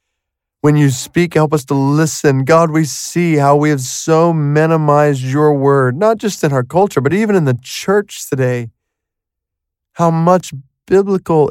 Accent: American